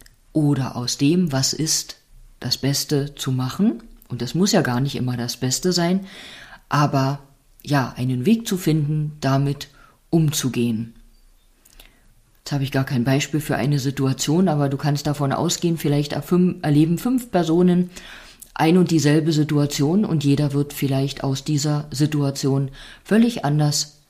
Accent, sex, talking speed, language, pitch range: German, female, 145 wpm, German, 135-170 Hz